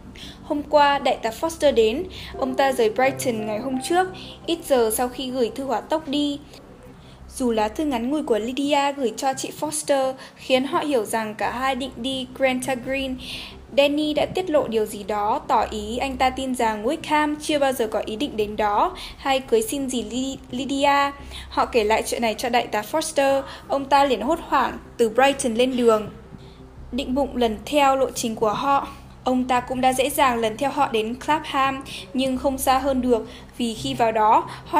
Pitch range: 235-290 Hz